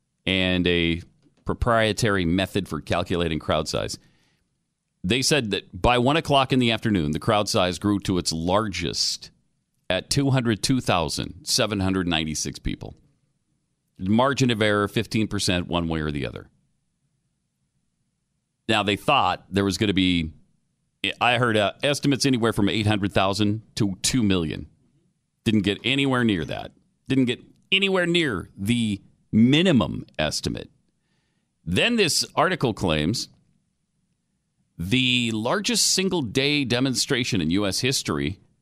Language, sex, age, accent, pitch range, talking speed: English, male, 40-59, American, 95-135 Hz, 120 wpm